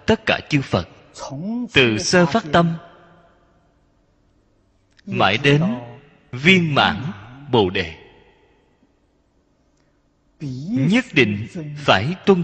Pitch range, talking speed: 100-165 Hz, 85 wpm